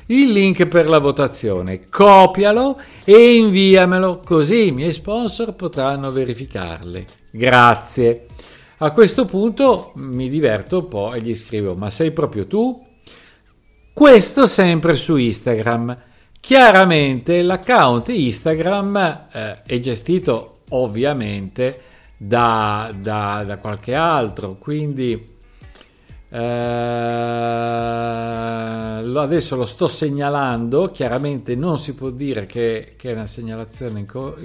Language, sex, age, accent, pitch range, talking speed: Italian, male, 50-69, native, 115-175 Hz, 110 wpm